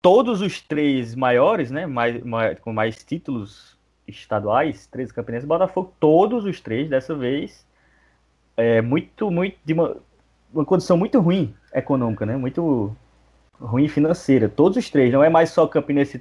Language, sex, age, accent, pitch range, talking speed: Portuguese, male, 20-39, Brazilian, 120-170 Hz, 150 wpm